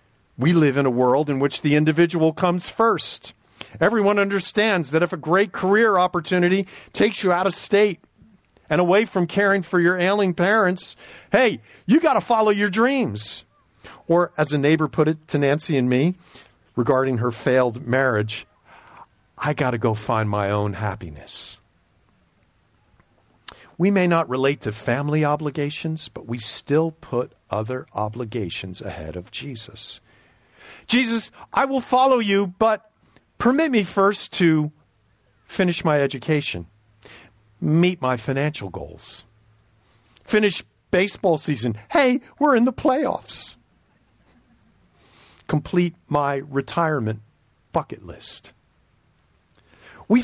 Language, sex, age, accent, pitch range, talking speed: English, male, 50-69, American, 110-185 Hz, 130 wpm